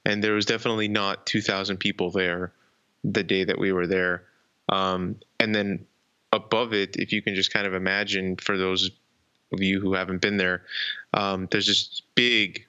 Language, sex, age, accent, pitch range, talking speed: English, male, 20-39, American, 95-110 Hz, 180 wpm